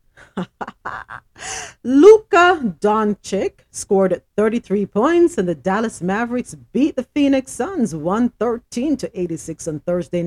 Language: English